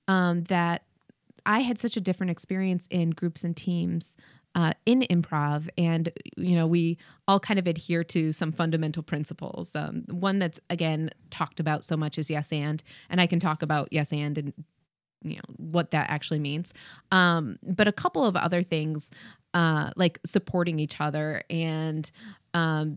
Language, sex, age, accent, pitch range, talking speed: English, female, 20-39, American, 160-200 Hz, 170 wpm